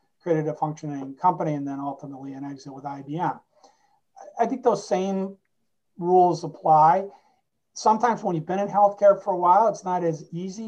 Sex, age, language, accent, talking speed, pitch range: male, 40-59, English, American, 170 wpm, 150-185 Hz